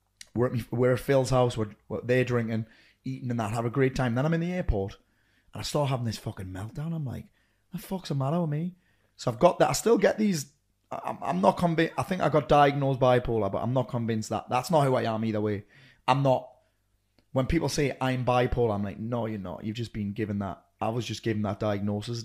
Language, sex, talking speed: English, male, 235 wpm